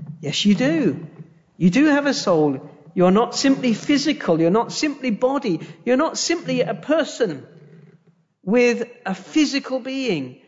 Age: 50-69